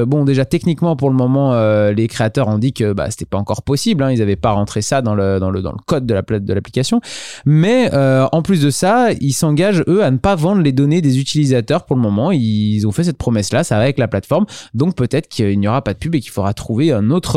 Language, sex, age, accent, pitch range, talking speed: French, male, 20-39, French, 110-155 Hz, 275 wpm